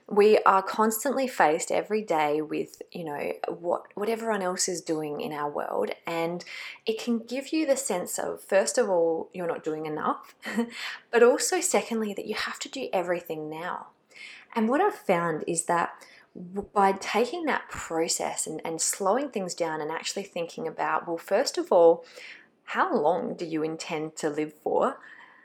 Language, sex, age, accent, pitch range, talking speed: English, female, 20-39, Australian, 165-240 Hz, 175 wpm